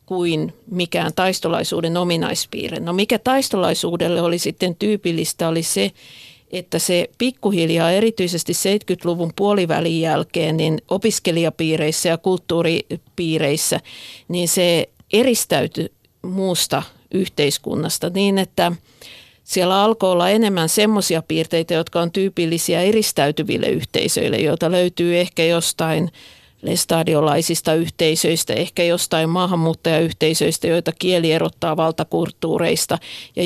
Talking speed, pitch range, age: 100 wpm, 160-185 Hz, 50-69